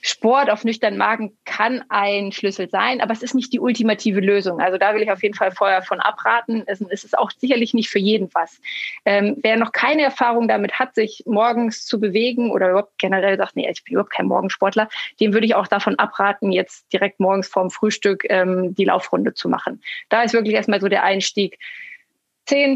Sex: female